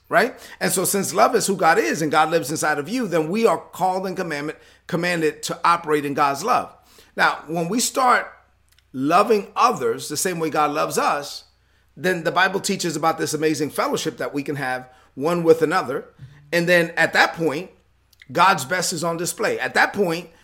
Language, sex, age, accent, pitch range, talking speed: English, male, 40-59, American, 155-210 Hz, 195 wpm